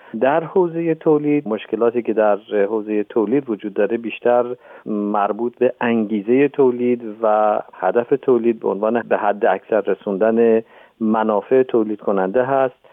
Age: 40-59